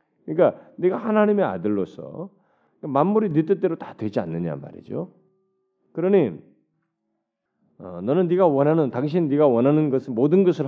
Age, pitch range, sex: 40-59, 125-195 Hz, male